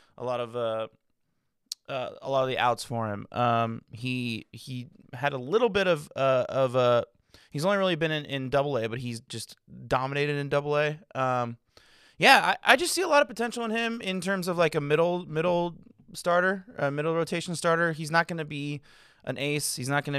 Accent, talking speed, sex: American, 215 wpm, male